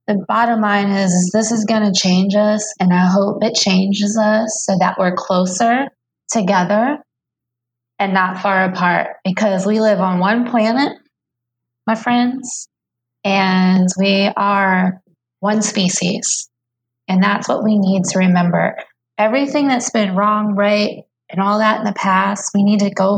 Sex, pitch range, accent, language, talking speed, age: female, 185-220 Hz, American, English, 160 wpm, 20-39